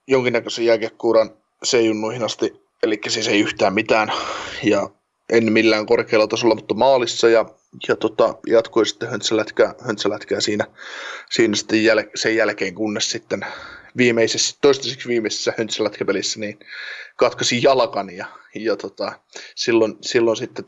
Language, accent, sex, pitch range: Finnish, native, male, 110-120 Hz